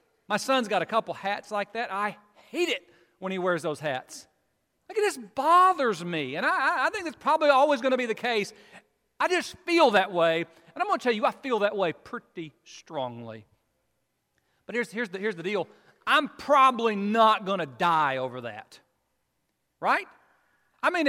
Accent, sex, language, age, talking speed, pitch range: American, male, English, 40-59, 195 wpm, 185-250 Hz